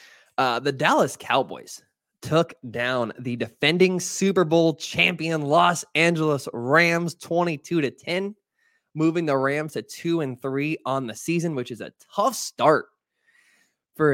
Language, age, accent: English, 20-39, American